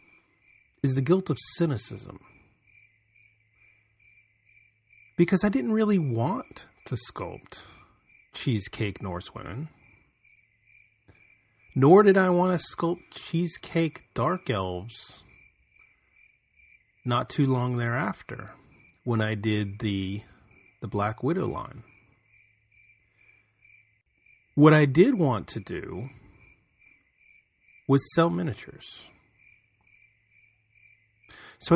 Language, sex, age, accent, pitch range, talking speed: English, male, 30-49, American, 105-130 Hz, 85 wpm